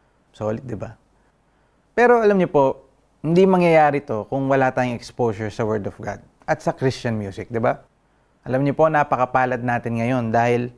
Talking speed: 175 wpm